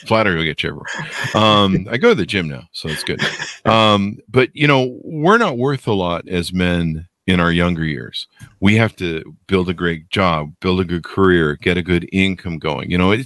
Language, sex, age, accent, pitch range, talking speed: English, male, 40-59, American, 85-105 Hz, 220 wpm